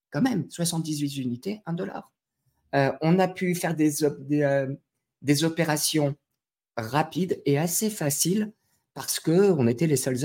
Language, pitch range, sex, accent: French, 125-170 Hz, male, French